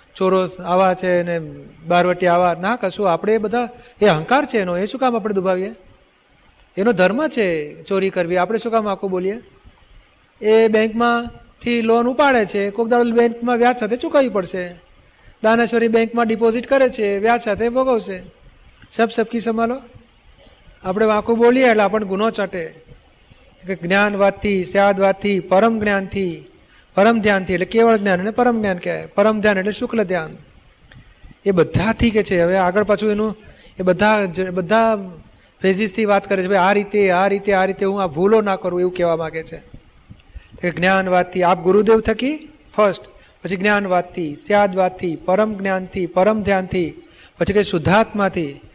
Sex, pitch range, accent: male, 185-225 Hz, native